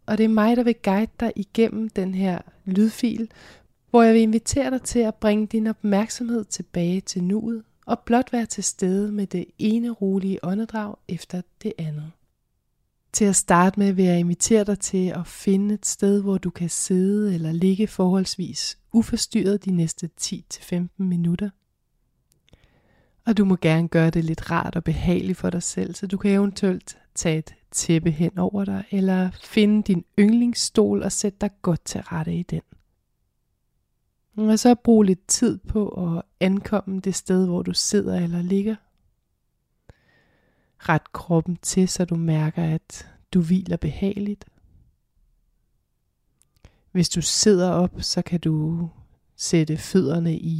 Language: Danish